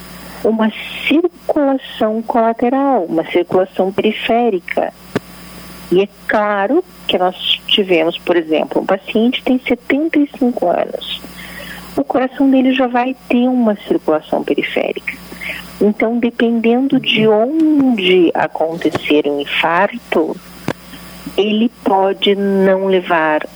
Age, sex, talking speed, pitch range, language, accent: 50-69, female, 100 wpm, 170-245 Hz, Portuguese, Brazilian